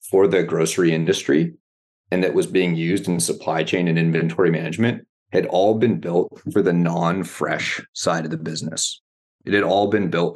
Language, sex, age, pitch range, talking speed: English, male, 30-49, 85-105 Hz, 185 wpm